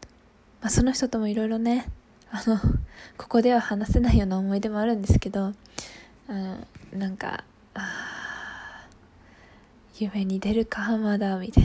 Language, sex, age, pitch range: Japanese, female, 10-29, 200-230 Hz